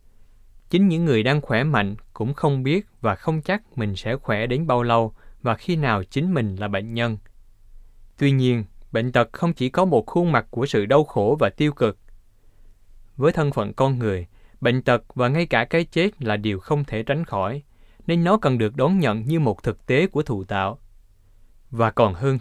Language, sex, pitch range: Vietnamese, male, 105-145 Hz